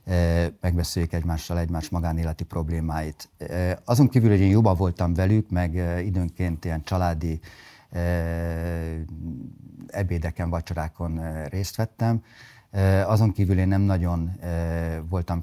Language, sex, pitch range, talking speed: Hungarian, male, 80-100 Hz, 100 wpm